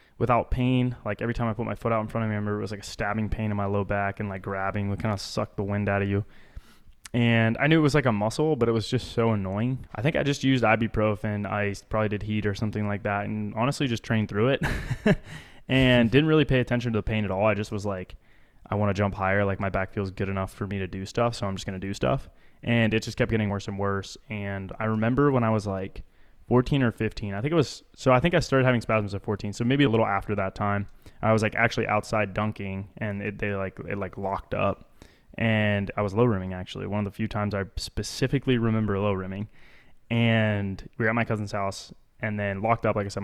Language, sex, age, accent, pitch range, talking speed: English, male, 20-39, American, 100-115 Hz, 260 wpm